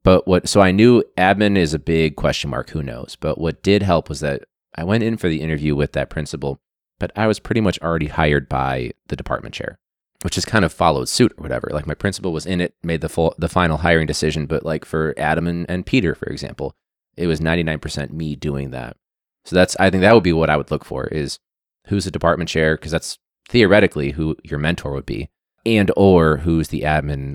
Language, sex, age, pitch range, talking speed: English, male, 20-39, 75-100 Hz, 235 wpm